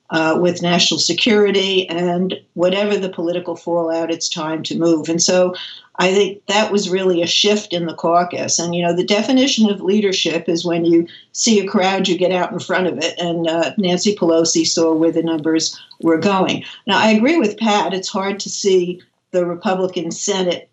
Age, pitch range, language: 60-79, 170-195 Hz, English